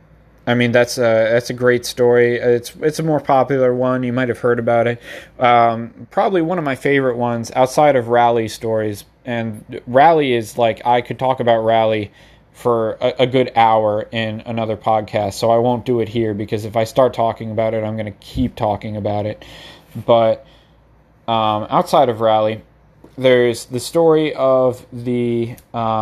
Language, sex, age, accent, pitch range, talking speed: English, male, 20-39, American, 110-130 Hz, 180 wpm